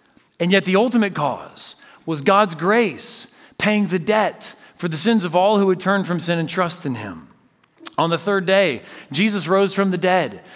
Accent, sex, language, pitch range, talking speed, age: American, male, English, 150-200 Hz, 195 wpm, 40-59